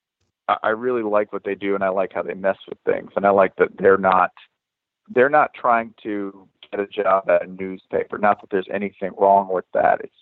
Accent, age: American, 30-49